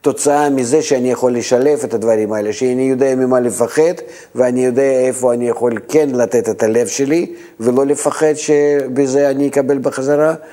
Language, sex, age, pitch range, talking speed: Hebrew, male, 50-69, 120-145 Hz, 160 wpm